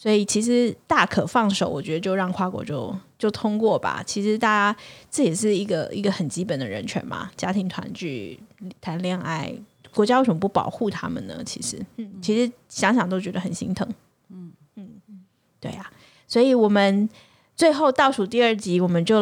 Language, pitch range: Chinese, 175-220 Hz